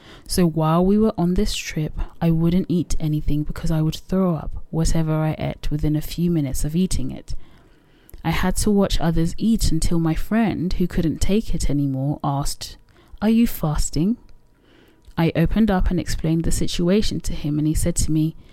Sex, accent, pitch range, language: female, British, 155-190 Hz, English